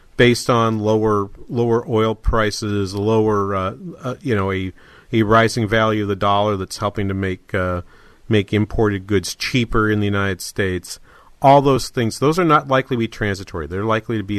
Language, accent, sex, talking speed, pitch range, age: English, American, male, 190 wpm, 100-125 Hz, 40-59